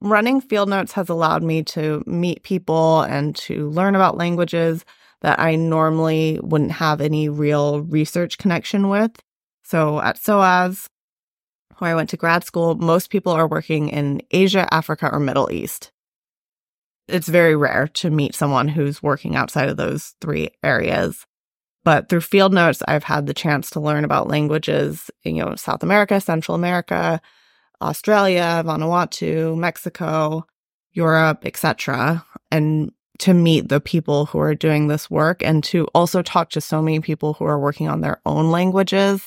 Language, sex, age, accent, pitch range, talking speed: English, female, 20-39, American, 155-180 Hz, 160 wpm